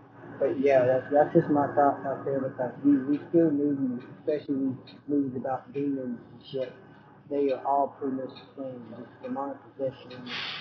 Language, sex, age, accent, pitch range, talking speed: English, male, 50-69, American, 140-185 Hz, 170 wpm